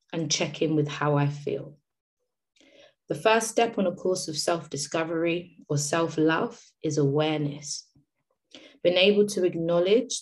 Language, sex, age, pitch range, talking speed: English, female, 20-39, 145-185 Hz, 135 wpm